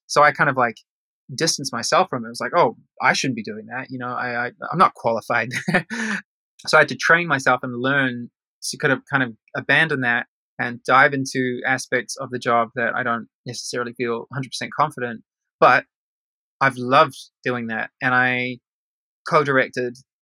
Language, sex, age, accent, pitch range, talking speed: English, male, 20-39, Australian, 120-140 Hz, 195 wpm